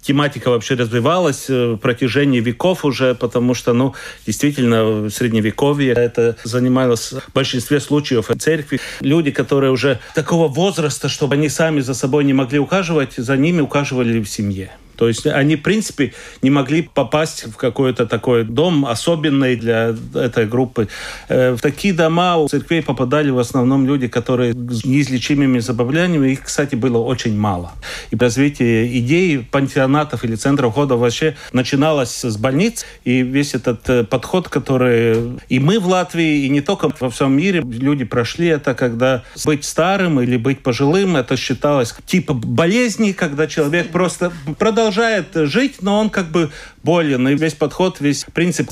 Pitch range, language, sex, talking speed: 125-160 Hz, Russian, male, 155 wpm